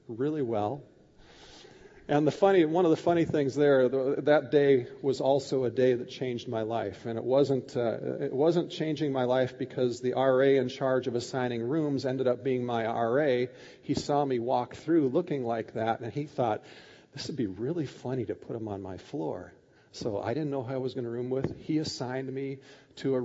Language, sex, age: English, male, 40-59